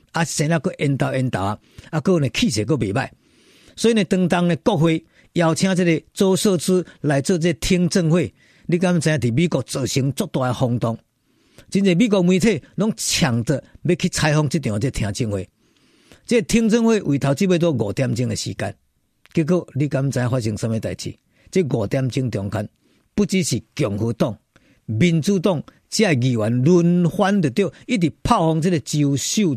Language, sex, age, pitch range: Chinese, male, 50-69, 135-195 Hz